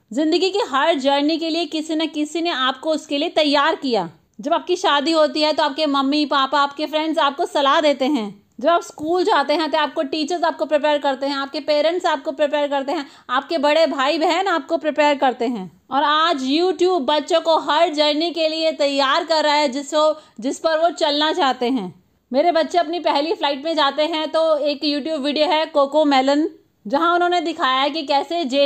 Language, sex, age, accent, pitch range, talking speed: Hindi, female, 30-49, native, 275-325 Hz, 205 wpm